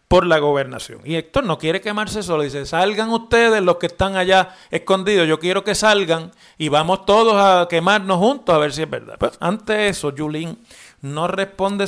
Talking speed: 190 wpm